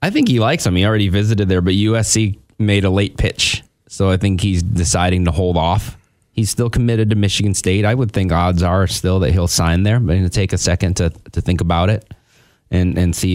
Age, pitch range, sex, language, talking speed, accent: 30-49, 85-105 Hz, male, English, 245 wpm, American